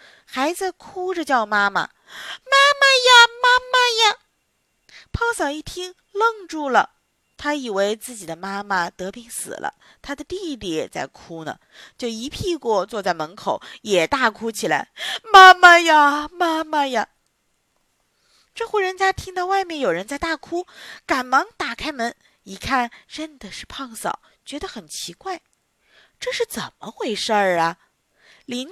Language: Chinese